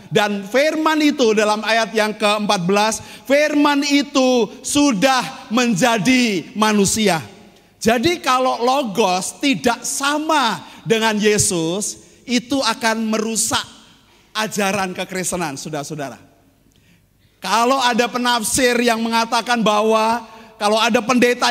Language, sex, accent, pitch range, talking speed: Indonesian, male, native, 200-260 Hz, 95 wpm